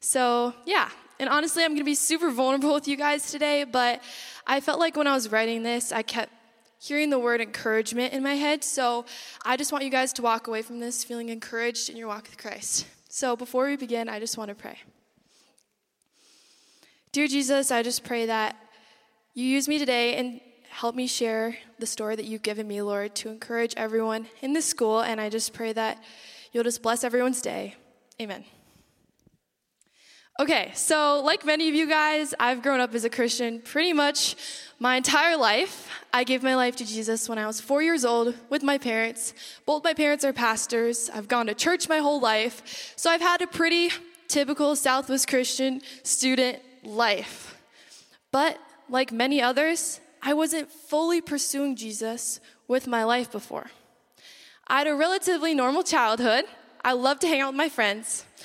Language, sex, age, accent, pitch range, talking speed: English, female, 10-29, American, 230-295 Hz, 185 wpm